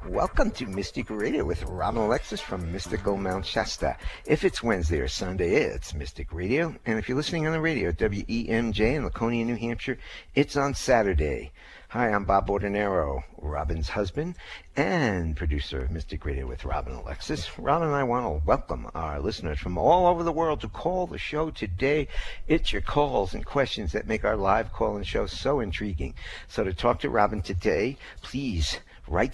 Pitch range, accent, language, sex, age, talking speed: 80-120 Hz, American, English, male, 60-79, 180 wpm